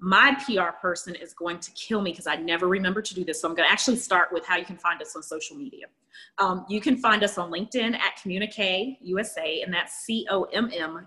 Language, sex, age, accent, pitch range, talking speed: English, female, 30-49, American, 175-215 Hz, 250 wpm